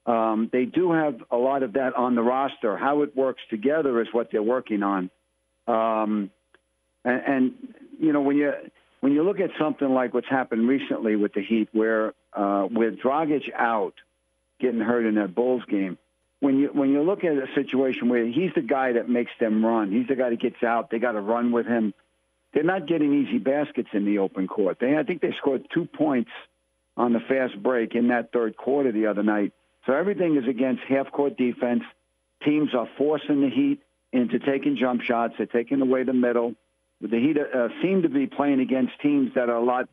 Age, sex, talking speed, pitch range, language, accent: 60-79, male, 205 wpm, 115-140 Hz, English, American